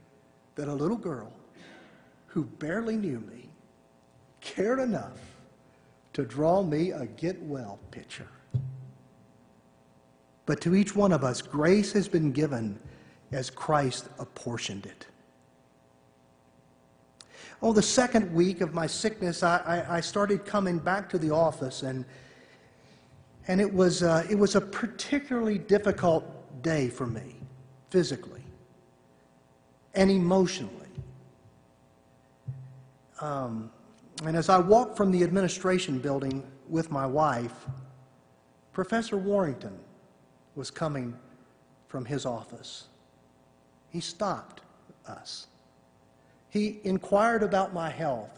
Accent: American